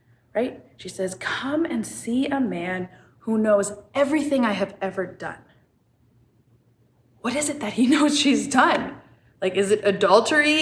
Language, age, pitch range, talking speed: English, 20-39, 165-215 Hz, 155 wpm